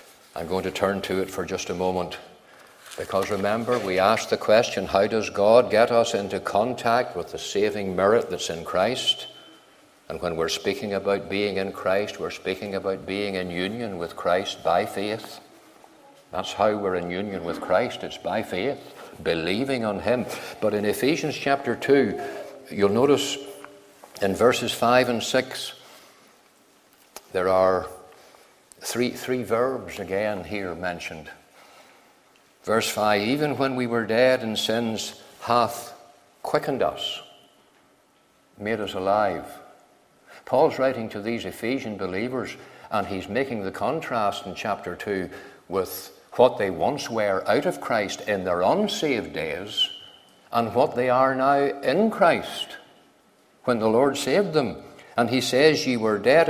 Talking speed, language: 150 wpm, English